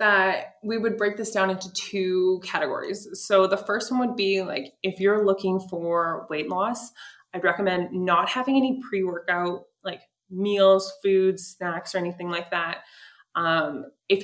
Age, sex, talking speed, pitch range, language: 20-39, female, 160 wpm, 180-220 Hz, English